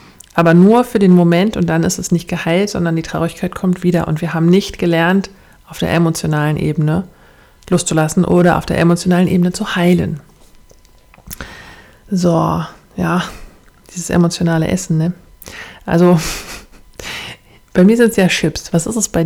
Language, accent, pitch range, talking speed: German, German, 165-195 Hz, 155 wpm